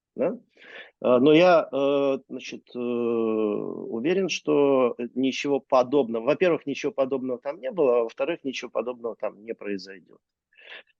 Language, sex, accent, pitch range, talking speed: Russian, male, native, 110-150 Hz, 115 wpm